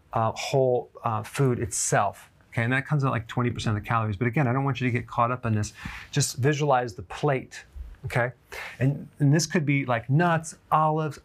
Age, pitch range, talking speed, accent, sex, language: 30-49, 115-150 Hz, 215 wpm, American, male, English